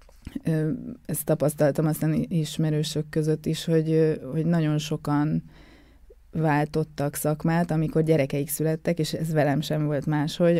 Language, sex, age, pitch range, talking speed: Hungarian, female, 20-39, 150-165 Hz, 120 wpm